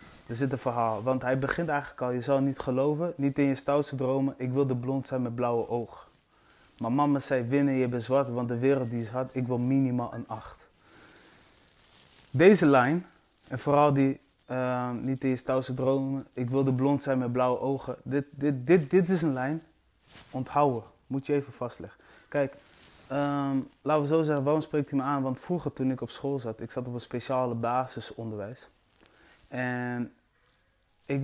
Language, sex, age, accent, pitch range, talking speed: Dutch, male, 20-39, Dutch, 120-140 Hz, 190 wpm